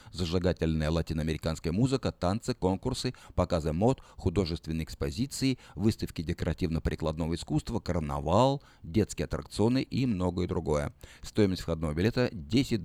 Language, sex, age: Russian, male, 50-69